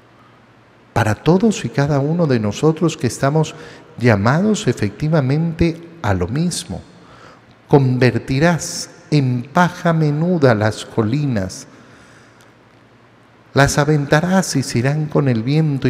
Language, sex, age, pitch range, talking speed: Spanish, male, 50-69, 125-160 Hz, 105 wpm